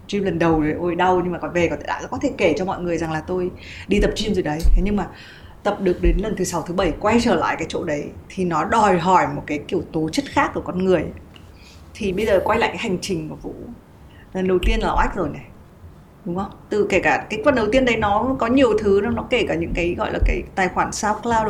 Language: Vietnamese